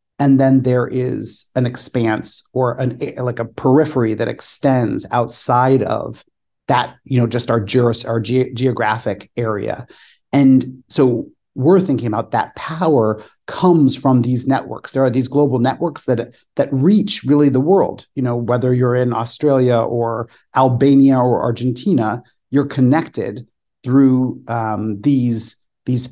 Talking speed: 145 wpm